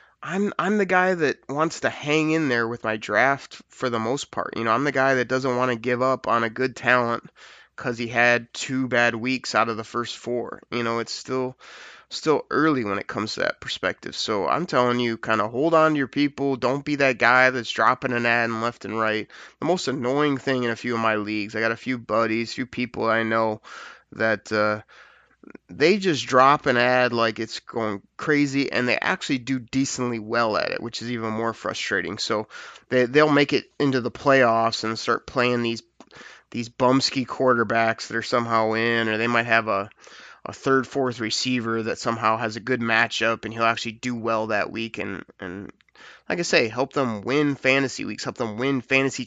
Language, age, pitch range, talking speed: English, 20-39, 115-130 Hz, 220 wpm